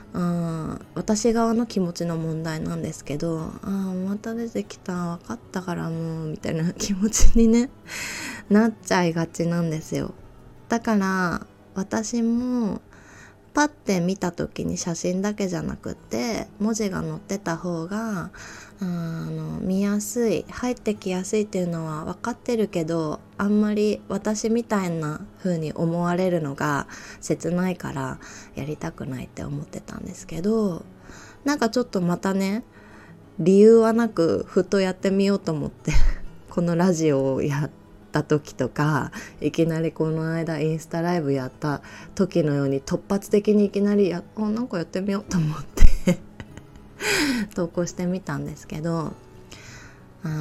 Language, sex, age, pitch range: Japanese, female, 20-39, 160-210 Hz